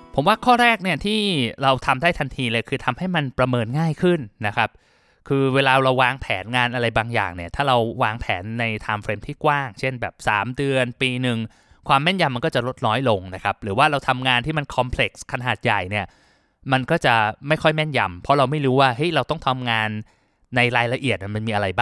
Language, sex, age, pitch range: Thai, male, 20-39, 115-155 Hz